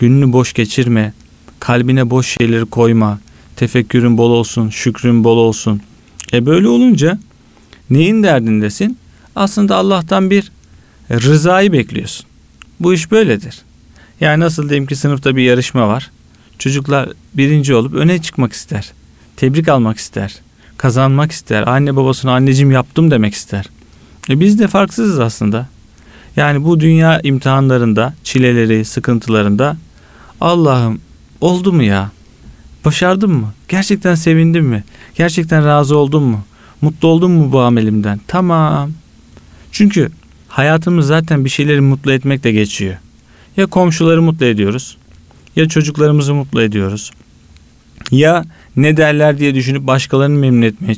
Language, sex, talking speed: Turkish, male, 125 wpm